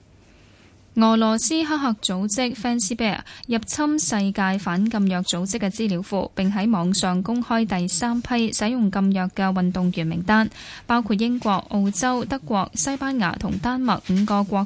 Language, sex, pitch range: Chinese, female, 185-230 Hz